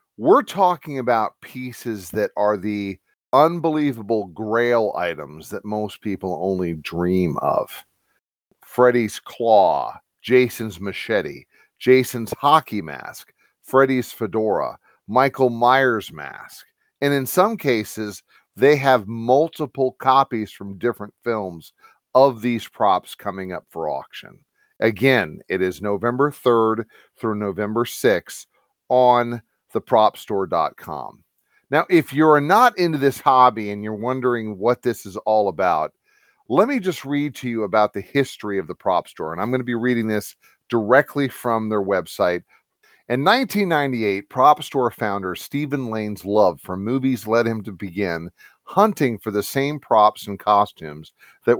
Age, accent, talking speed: 40-59, American, 135 wpm